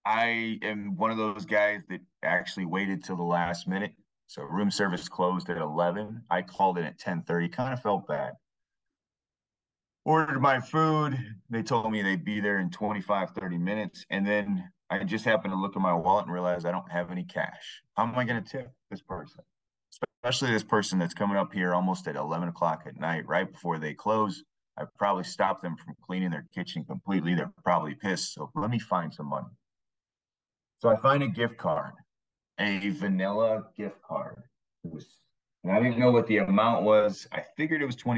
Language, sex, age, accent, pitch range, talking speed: English, male, 30-49, American, 95-120 Hz, 195 wpm